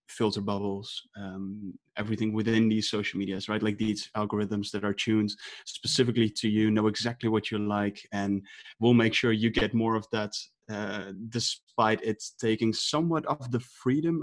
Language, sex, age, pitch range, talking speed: English, male, 20-39, 105-130 Hz, 170 wpm